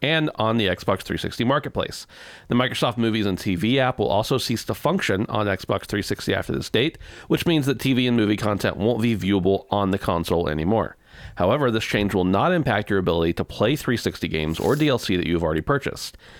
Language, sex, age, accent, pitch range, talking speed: English, male, 40-59, American, 90-120 Hz, 200 wpm